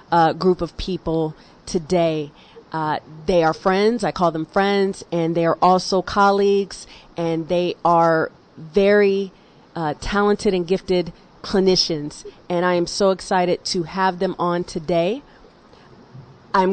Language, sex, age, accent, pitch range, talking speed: English, female, 40-59, American, 170-205 Hz, 135 wpm